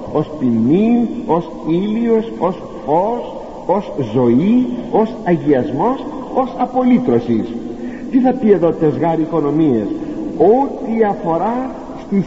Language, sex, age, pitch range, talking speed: Greek, male, 60-79, 160-265 Hz, 105 wpm